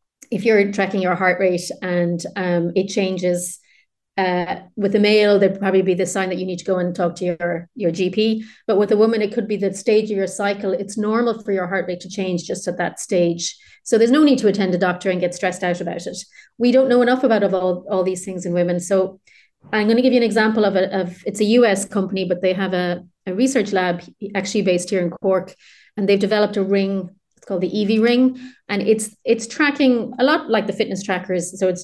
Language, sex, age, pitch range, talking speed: English, female, 30-49, 180-215 Hz, 240 wpm